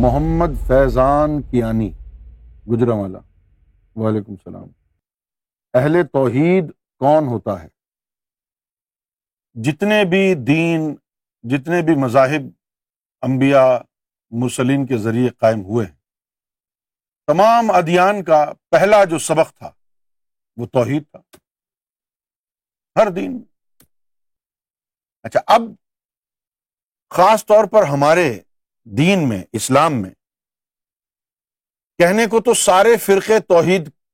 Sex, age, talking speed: male, 50-69, 95 wpm